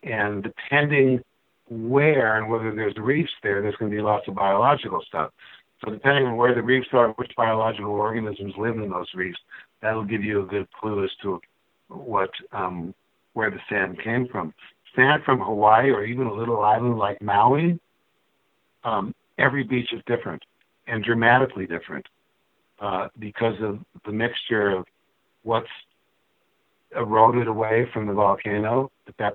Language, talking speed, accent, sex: English, 155 wpm, American, male